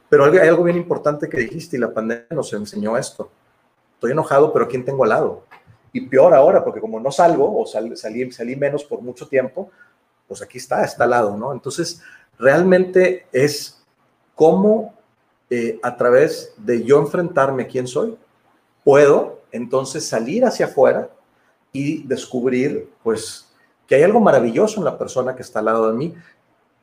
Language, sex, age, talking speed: Spanish, male, 40-59, 170 wpm